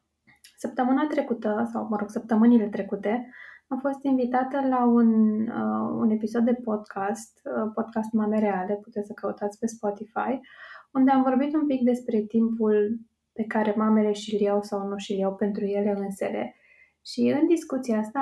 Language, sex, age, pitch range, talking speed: Romanian, female, 20-39, 210-250 Hz, 160 wpm